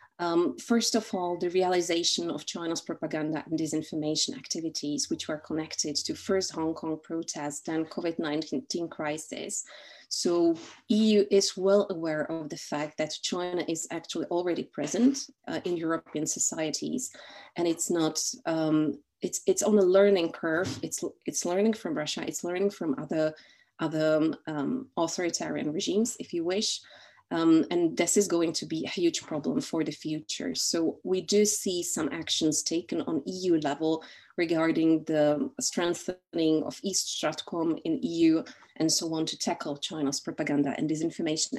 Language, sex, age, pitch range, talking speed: Czech, female, 30-49, 155-200 Hz, 155 wpm